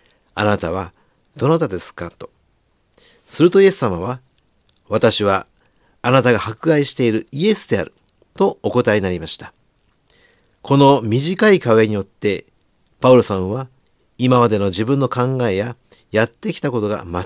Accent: native